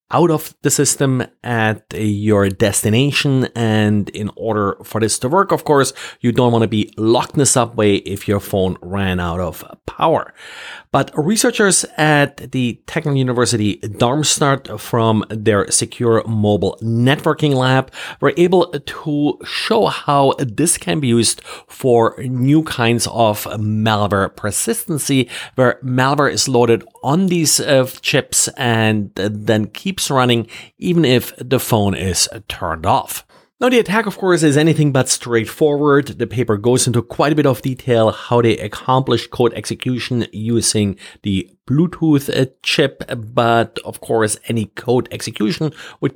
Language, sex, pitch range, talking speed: English, male, 110-140 Hz, 150 wpm